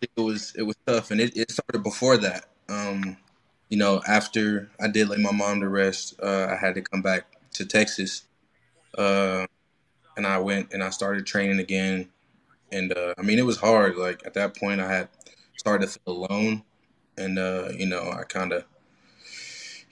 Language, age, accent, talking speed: English, 20-39, American, 190 wpm